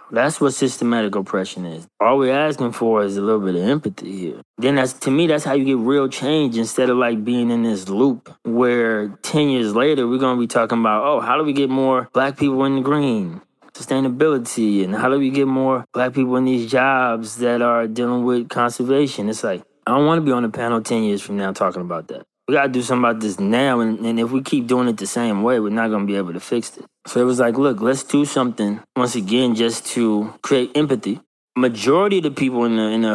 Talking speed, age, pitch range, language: 250 wpm, 20-39, 110-130 Hz, English